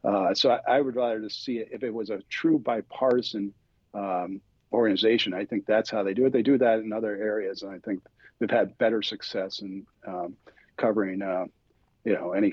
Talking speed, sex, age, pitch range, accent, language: 205 wpm, male, 50-69, 105-125 Hz, American, English